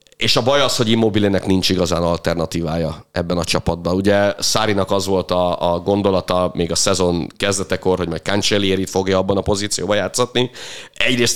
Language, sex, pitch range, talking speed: Hungarian, male, 90-115 Hz, 165 wpm